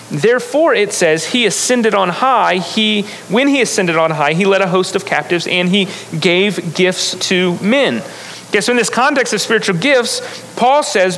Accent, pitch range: American, 185-230 Hz